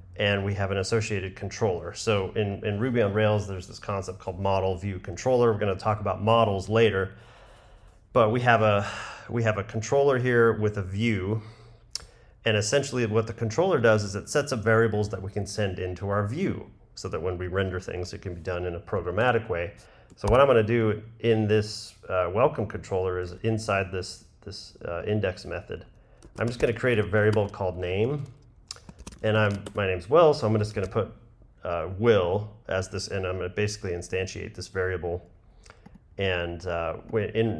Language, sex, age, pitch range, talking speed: English, male, 30-49, 95-110 Hz, 190 wpm